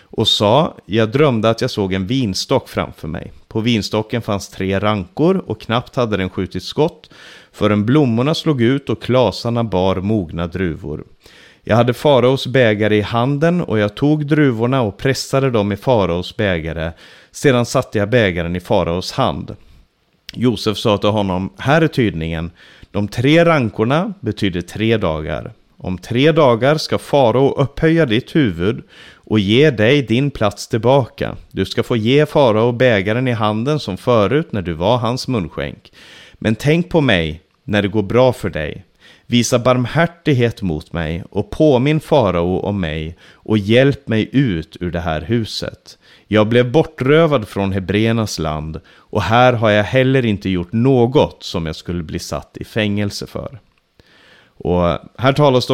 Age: 30-49